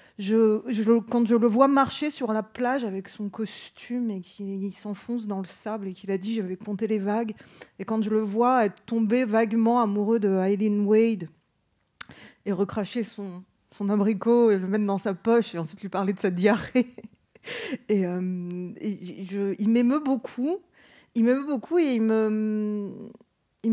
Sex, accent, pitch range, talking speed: female, French, 205-240 Hz, 180 wpm